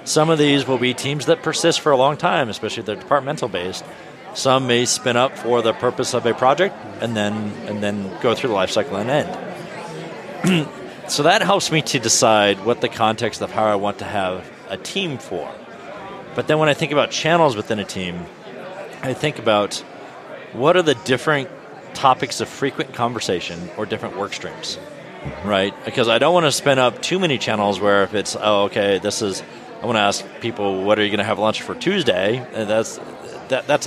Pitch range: 105-130 Hz